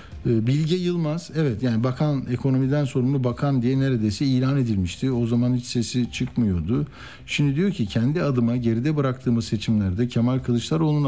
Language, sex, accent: Turkish, male, native